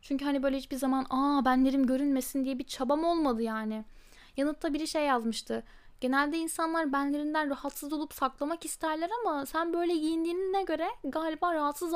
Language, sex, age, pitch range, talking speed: Turkish, female, 10-29, 245-305 Hz, 155 wpm